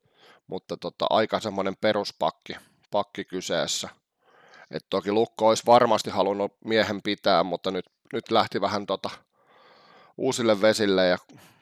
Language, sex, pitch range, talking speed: Finnish, male, 100-115 Hz, 115 wpm